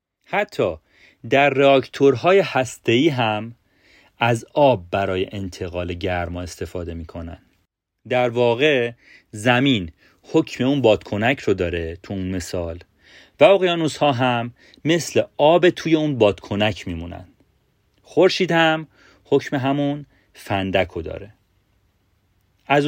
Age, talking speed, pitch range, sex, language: 40-59, 105 wpm, 95-135 Hz, male, Persian